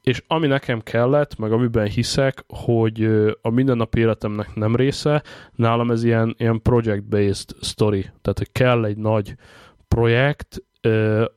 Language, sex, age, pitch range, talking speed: Hungarian, male, 20-39, 110-125 Hz, 135 wpm